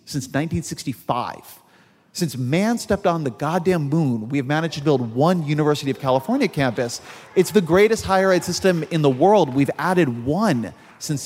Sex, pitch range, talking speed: male, 120-160 Hz, 170 wpm